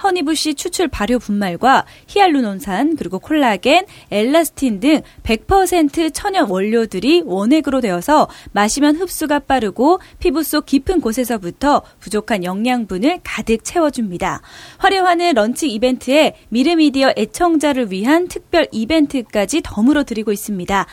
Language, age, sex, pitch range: Korean, 20-39, female, 225-320 Hz